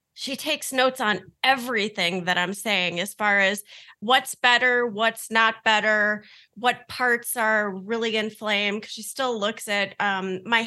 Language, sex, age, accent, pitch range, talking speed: English, female, 30-49, American, 200-240 Hz, 150 wpm